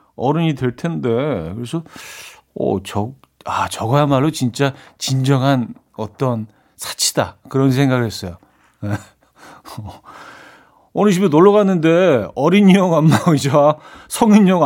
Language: Korean